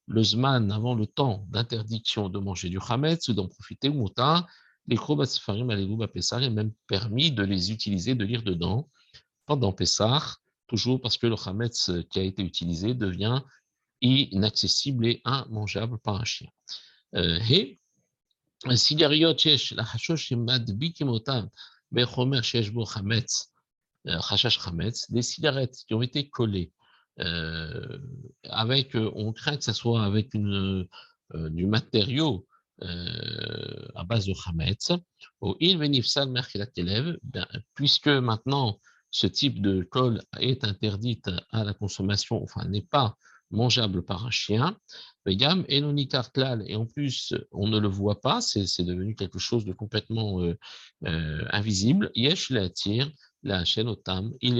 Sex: male